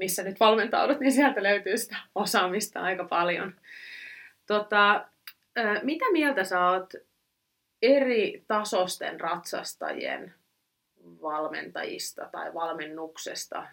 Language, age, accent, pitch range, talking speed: Finnish, 30-49, native, 165-210 Hz, 90 wpm